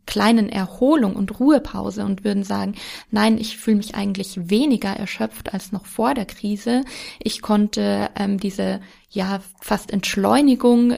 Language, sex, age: German, female, 20-39